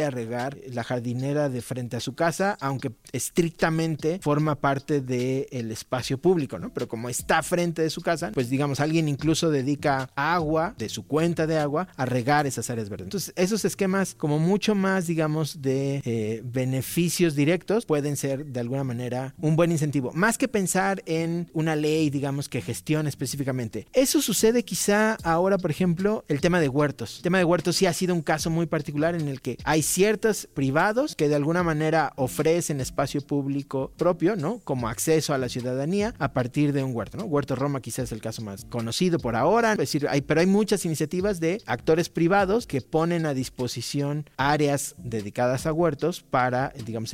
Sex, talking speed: male, 185 wpm